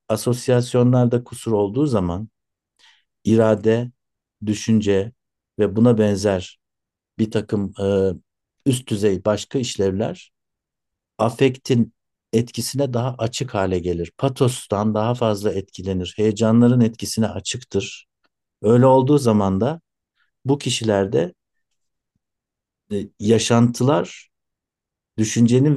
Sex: male